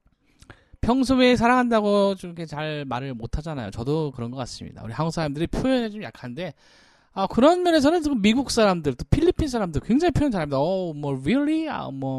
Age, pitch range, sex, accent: 20-39, 120-180 Hz, male, native